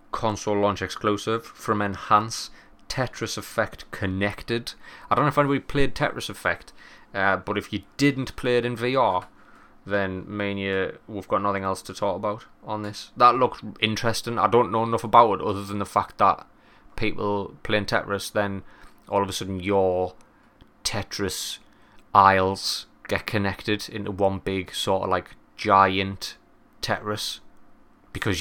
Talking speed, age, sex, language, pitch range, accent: 150 wpm, 20-39, male, English, 95-115 Hz, British